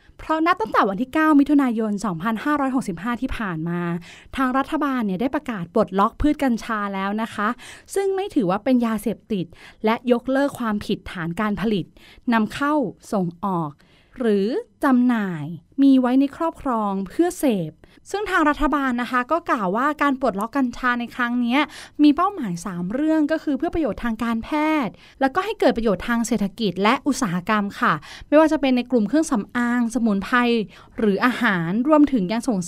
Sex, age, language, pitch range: female, 20-39, Thai, 215-290 Hz